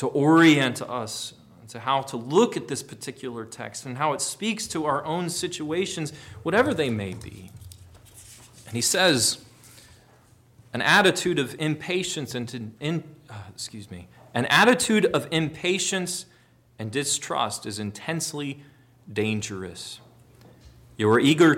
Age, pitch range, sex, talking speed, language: 30-49, 120-175 Hz, male, 135 wpm, English